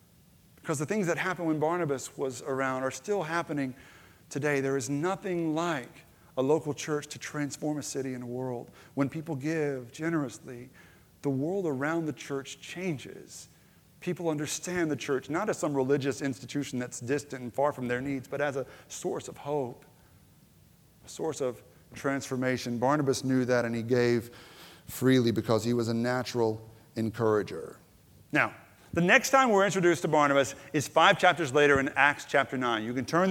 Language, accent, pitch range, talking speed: English, American, 140-210 Hz, 170 wpm